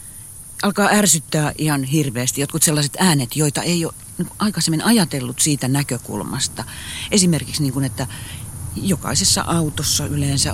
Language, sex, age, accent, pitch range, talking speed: Finnish, female, 40-59, native, 115-165 Hz, 120 wpm